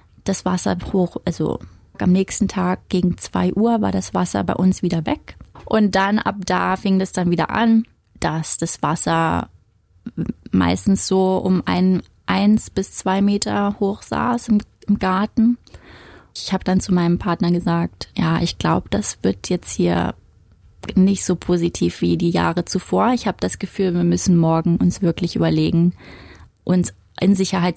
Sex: female